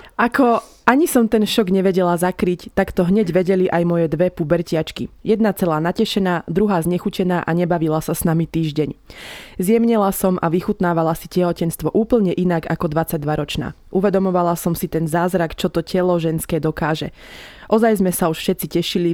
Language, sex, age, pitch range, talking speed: Slovak, female, 20-39, 165-195 Hz, 165 wpm